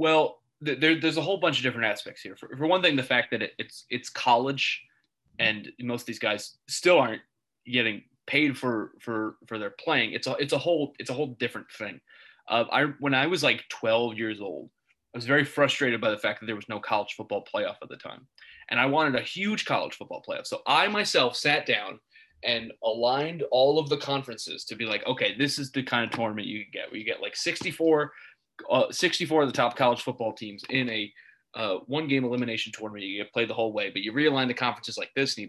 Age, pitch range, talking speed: 20-39, 120-165 Hz, 235 wpm